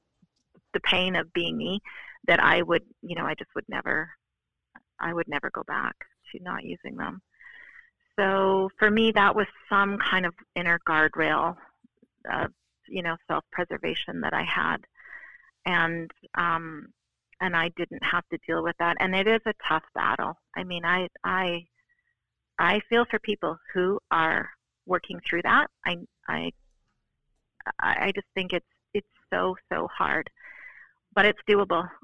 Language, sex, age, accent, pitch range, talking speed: English, female, 40-59, American, 175-225 Hz, 155 wpm